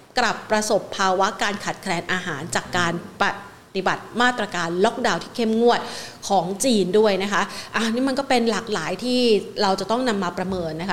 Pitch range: 185-235 Hz